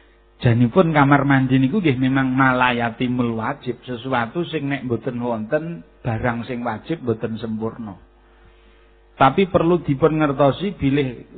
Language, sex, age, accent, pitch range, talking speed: Indonesian, male, 50-69, native, 105-130 Hz, 115 wpm